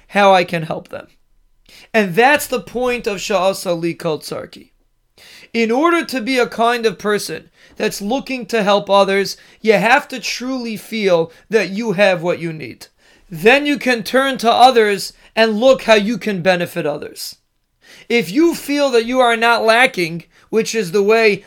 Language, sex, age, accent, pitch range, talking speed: English, male, 30-49, American, 195-255 Hz, 175 wpm